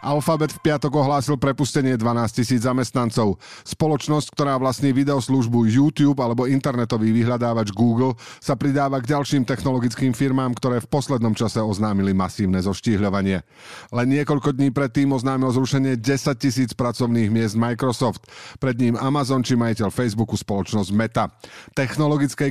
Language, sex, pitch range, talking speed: Slovak, male, 110-140 Hz, 135 wpm